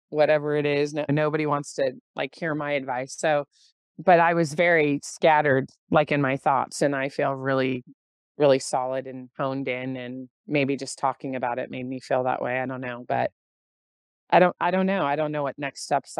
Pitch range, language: 135-155 Hz, English